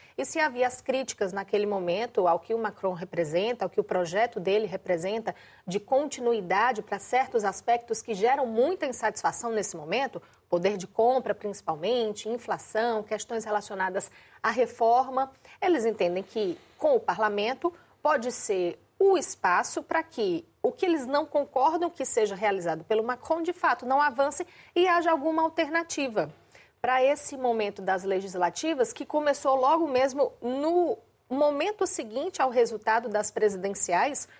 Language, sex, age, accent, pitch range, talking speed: Portuguese, female, 40-59, Brazilian, 215-280 Hz, 145 wpm